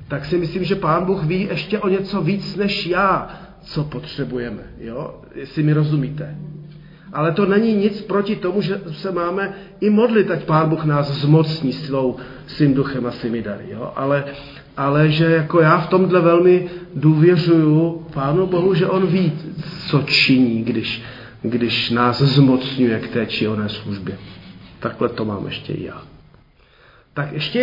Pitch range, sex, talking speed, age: 140-180 Hz, male, 155 wpm, 40-59